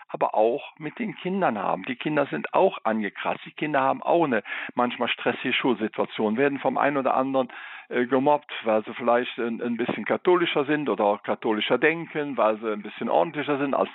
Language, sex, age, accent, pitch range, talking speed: German, male, 50-69, German, 105-145 Hz, 190 wpm